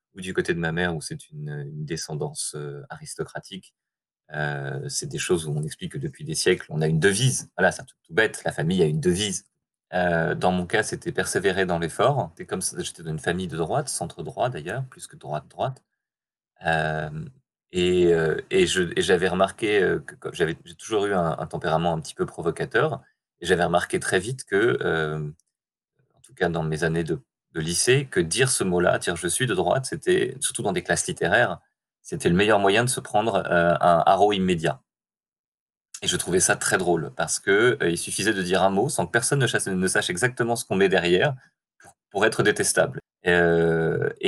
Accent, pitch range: French, 85-135 Hz